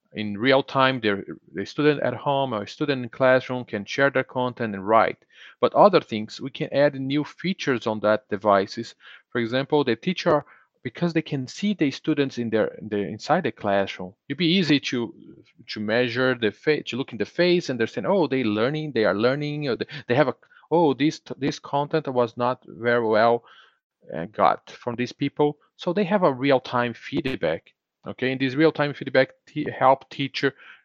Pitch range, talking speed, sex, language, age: 120-150 Hz, 185 wpm, male, English, 40-59